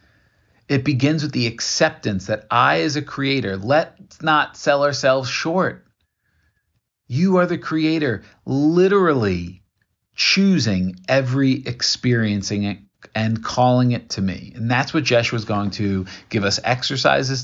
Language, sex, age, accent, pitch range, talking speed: English, male, 40-59, American, 100-130 Hz, 130 wpm